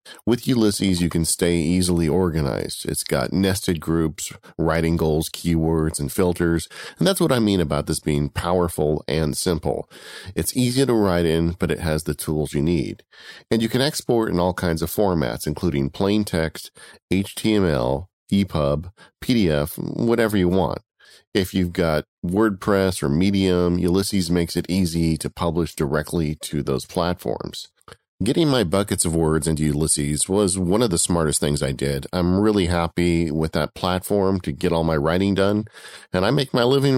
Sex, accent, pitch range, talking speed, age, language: male, American, 80-105 Hz, 170 wpm, 40-59, English